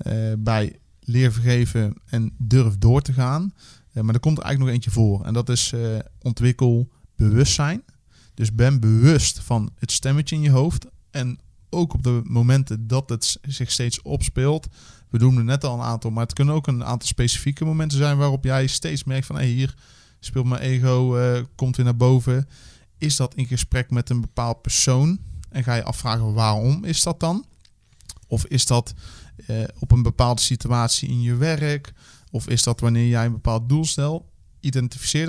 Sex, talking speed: male, 190 wpm